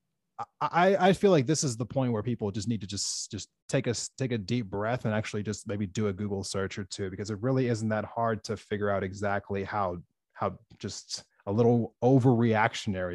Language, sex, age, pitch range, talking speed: English, male, 30-49, 105-140 Hz, 210 wpm